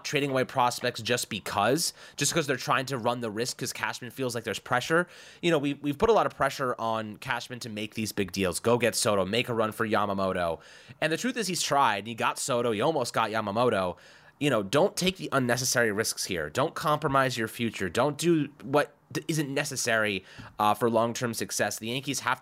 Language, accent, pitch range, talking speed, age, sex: English, American, 110-145 Hz, 215 wpm, 30-49, male